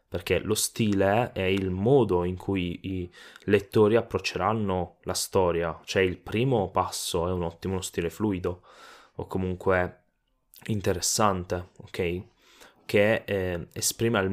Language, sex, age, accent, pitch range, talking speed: Italian, male, 10-29, native, 90-110 Hz, 130 wpm